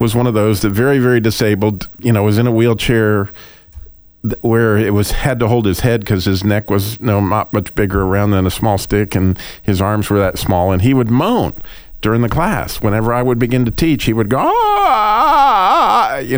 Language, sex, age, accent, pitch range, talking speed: English, male, 50-69, American, 95-125 Hz, 210 wpm